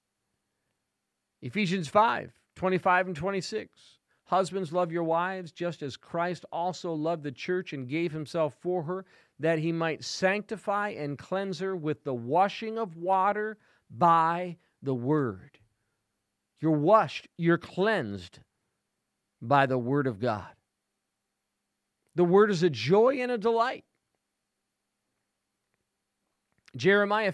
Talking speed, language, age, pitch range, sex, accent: 120 wpm, English, 50-69, 135-190 Hz, male, American